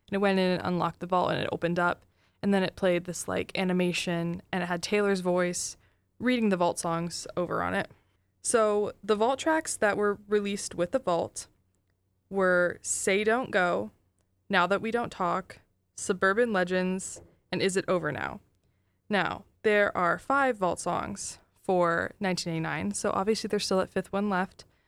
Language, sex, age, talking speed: English, female, 20-39, 175 wpm